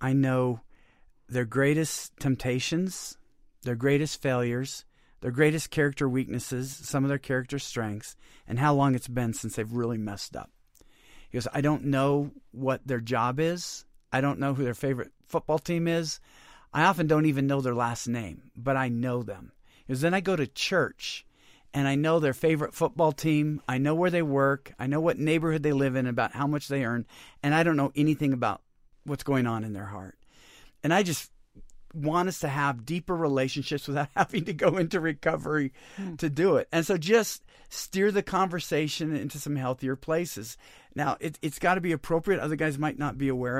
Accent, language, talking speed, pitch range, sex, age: American, English, 195 wpm, 130-160 Hz, male, 40-59